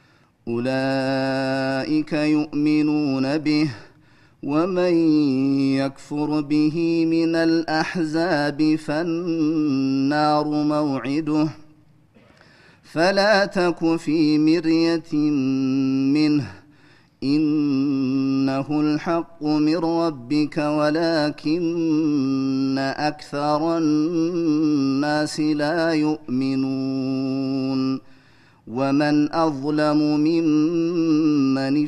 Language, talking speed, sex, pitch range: Amharic, 50 wpm, male, 135-155 Hz